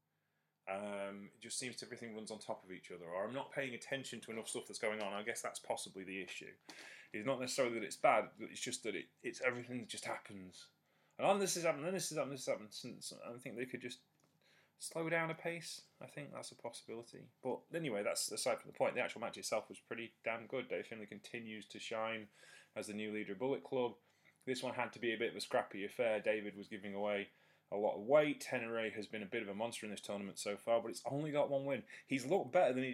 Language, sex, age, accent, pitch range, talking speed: English, male, 20-39, British, 105-135 Hz, 250 wpm